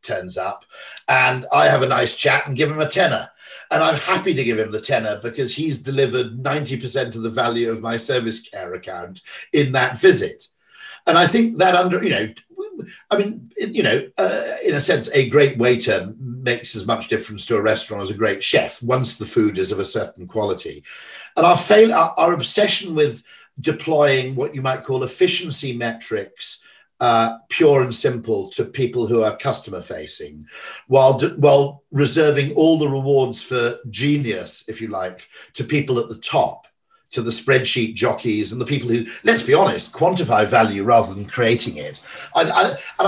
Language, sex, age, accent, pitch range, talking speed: English, male, 50-69, British, 115-185 Hz, 180 wpm